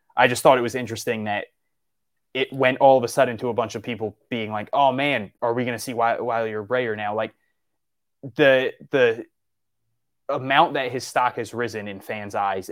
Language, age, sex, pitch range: English, 20-39, male, 105-125 Hz